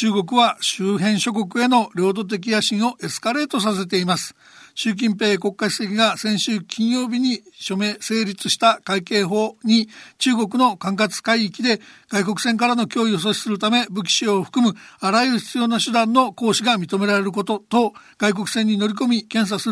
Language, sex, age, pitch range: Japanese, male, 60-79, 205-240 Hz